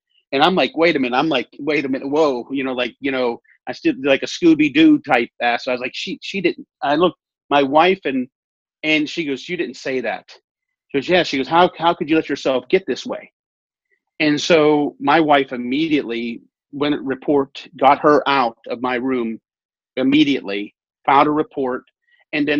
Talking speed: 205 wpm